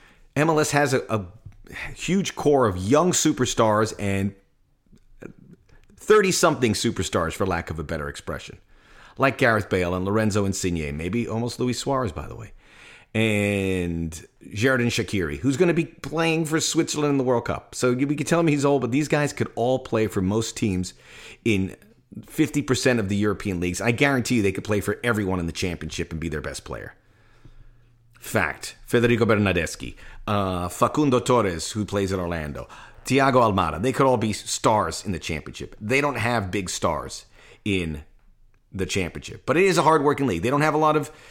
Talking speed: 180 wpm